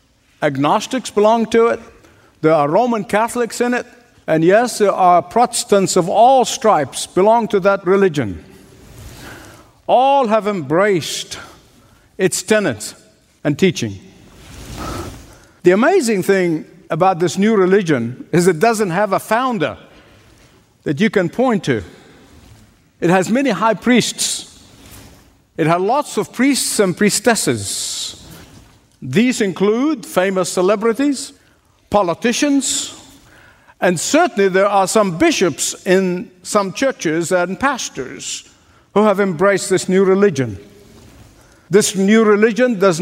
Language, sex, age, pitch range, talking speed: English, male, 50-69, 175-230 Hz, 120 wpm